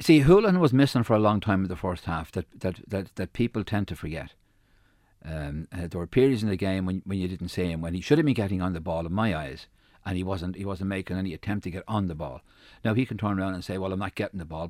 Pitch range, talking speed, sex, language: 95-130 Hz, 290 wpm, male, English